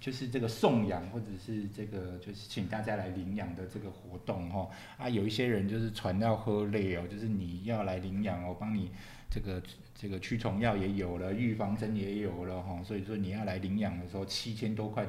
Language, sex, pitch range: Chinese, male, 95-115 Hz